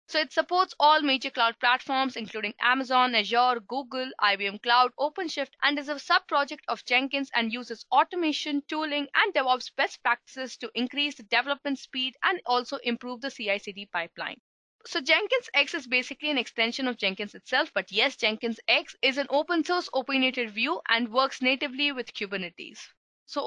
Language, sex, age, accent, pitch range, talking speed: English, female, 20-39, Indian, 240-305 Hz, 170 wpm